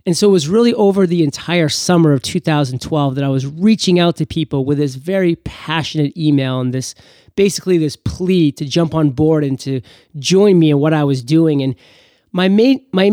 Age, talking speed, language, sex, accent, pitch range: 30-49, 205 wpm, English, male, American, 145-180 Hz